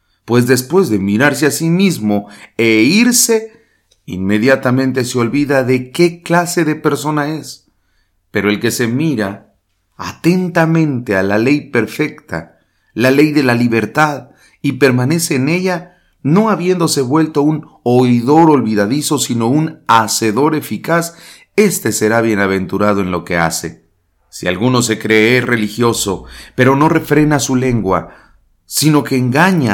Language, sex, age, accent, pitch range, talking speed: English, male, 40-59, Mexican, 105-150 Hz, 135 wpm